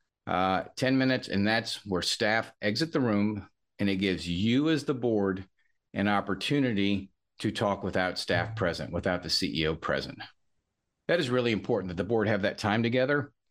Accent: American